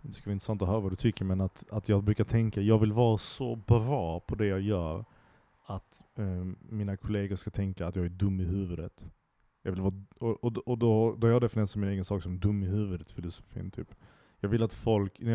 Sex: male